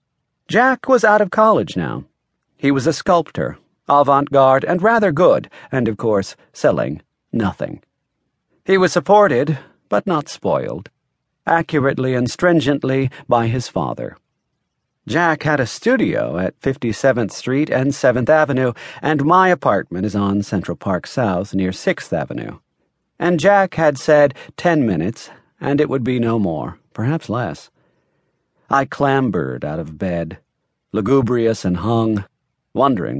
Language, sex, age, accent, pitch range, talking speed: English, male, 40-59, American, 110-150 Hz, 135 wpm